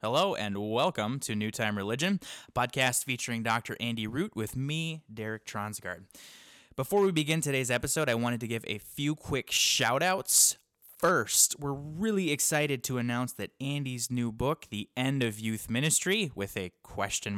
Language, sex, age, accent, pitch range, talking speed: English, male, 20-39, American, 105-135 Hz, 165 wpm